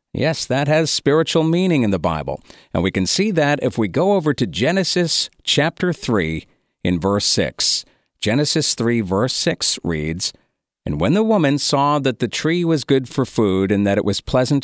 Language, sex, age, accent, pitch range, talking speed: English, male, 50-69, American, 95-140 Hz, 190 wpm